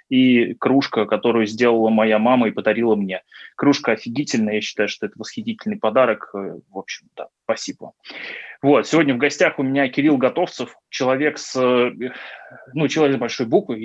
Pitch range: 115-140 Hz